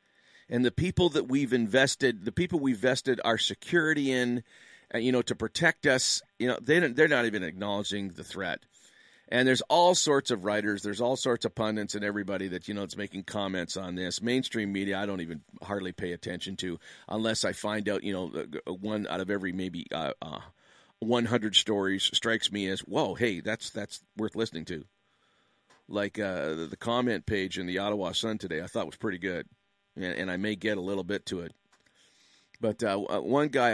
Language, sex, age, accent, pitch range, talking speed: English, male, 50-69, American, 95-120 Hz, 200 wpm